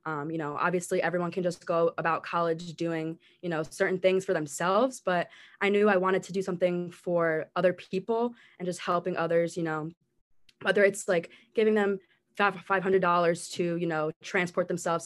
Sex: female